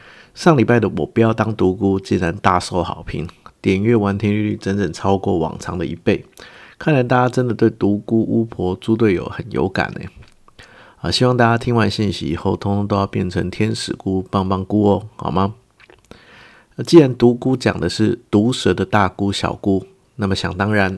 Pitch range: 95-115 Hz